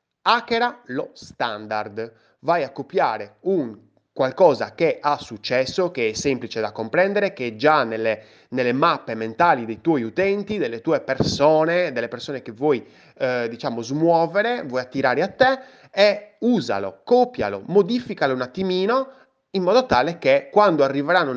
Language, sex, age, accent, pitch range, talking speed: Italian, male, 30-49, native, 130-195 Hz, 145 wpm